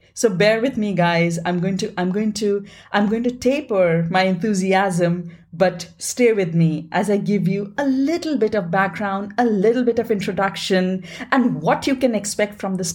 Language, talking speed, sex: English, 195 wpm, female